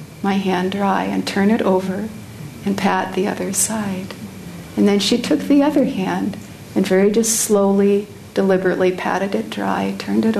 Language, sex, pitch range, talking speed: English, female, 185-210 Hz, 165 wpm